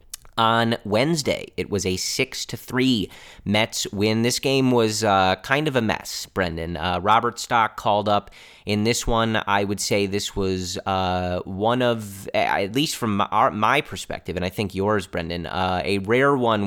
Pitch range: 90-115 Hz